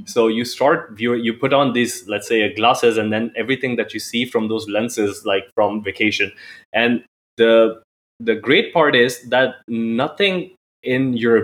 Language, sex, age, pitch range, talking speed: English, male, 20-39, 110-125 Hz, 180 wpm